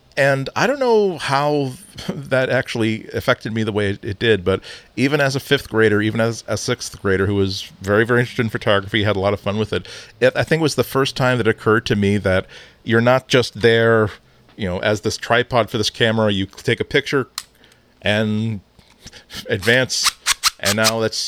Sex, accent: male, American